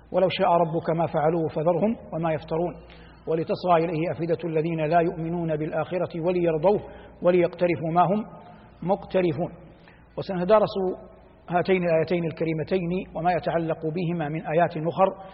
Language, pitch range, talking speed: Arabic, 170-215 Hz, 115 wpm